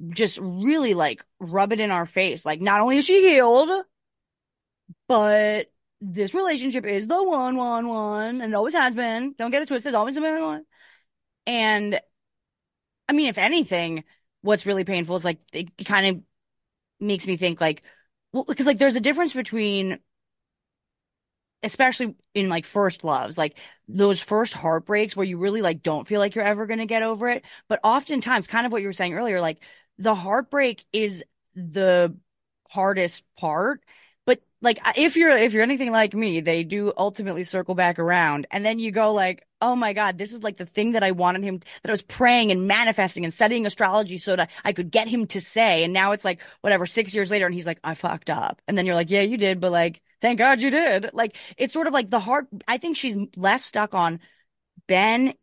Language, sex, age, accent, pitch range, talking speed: English, female, 20-39, American, 185-235 Hz, 200 wpm